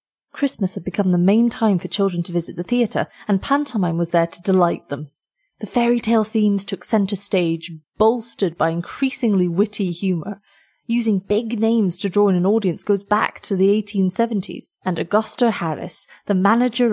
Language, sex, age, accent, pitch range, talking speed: English, female, 30-49, British, 180-220 Hz, 175 wpm